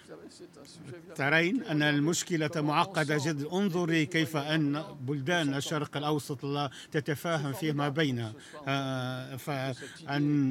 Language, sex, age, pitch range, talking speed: Arabic, male, 50-69, 140-165 Hz, 90 wpm